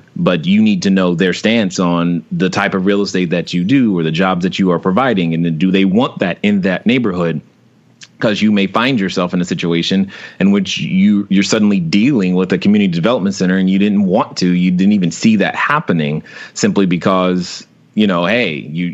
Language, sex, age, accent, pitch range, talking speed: English, male, 30-49, American, 85-100 Hz, 220 wpm